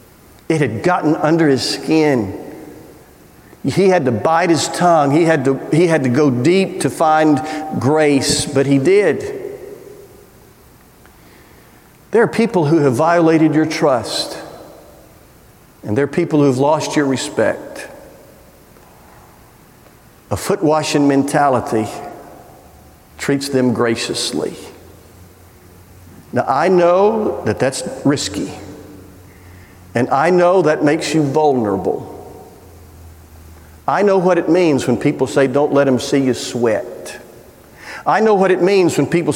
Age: 50-69